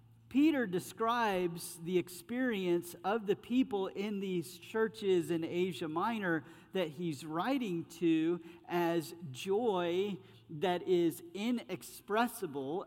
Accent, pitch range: American, 160-200 Hz